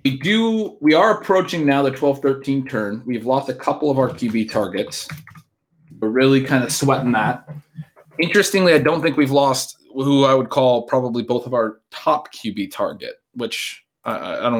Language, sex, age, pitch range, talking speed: English, male, 20-39, 110-140 Hz, 175 wpm